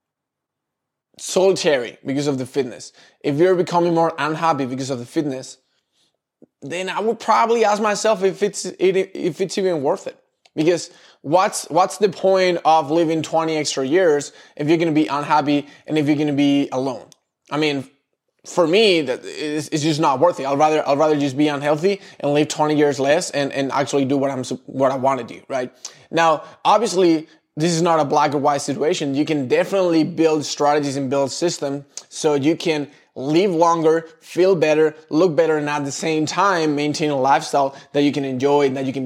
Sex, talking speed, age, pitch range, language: male, 200 wpm, 20-39, 140-170 Hz, English